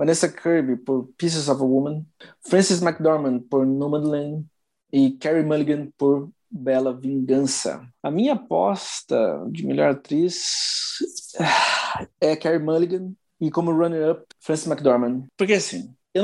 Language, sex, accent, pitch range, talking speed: Portuguese, male, Brazilian, 140-175 Hz, 130 wpm